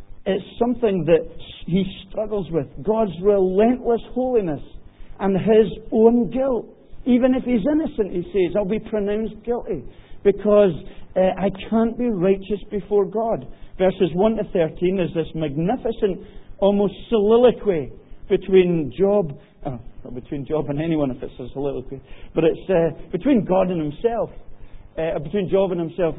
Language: English